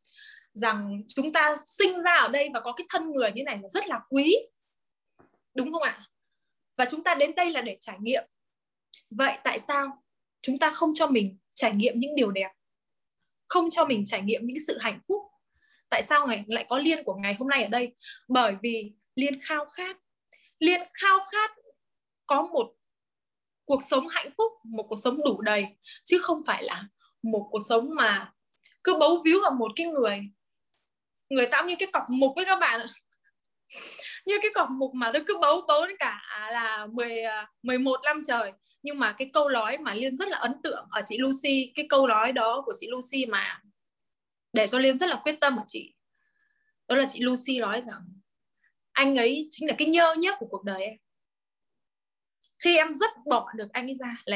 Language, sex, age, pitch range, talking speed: Vietnamese, female, 10-29, 235-335 Hz, 200 wpm